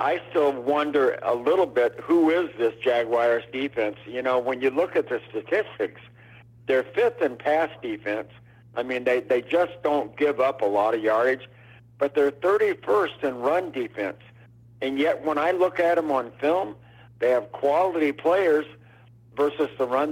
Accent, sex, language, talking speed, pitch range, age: American, male, English, 175 wpm, 115-145 Hz, 60-79